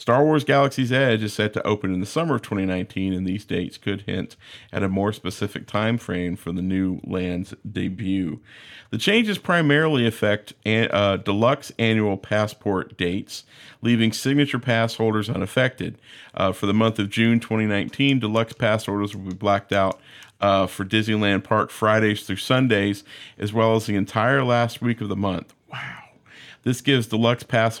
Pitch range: 100-120 Hz